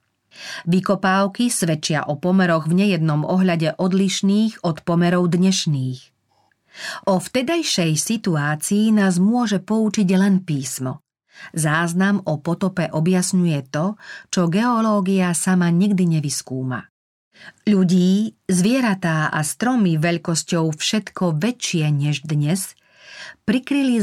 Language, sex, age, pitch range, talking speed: Slovak, female, 40-59, 160-205 Hz, 95 wpm